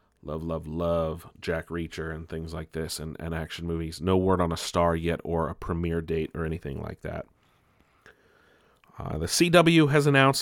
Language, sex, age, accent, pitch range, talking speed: English, male, 30-49, American, 85-115 Hz, 185 wpm